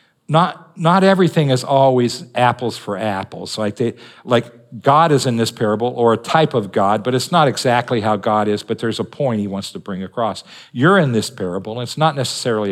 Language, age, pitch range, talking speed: English, 50-69, 110-140 Hz, 210 wpm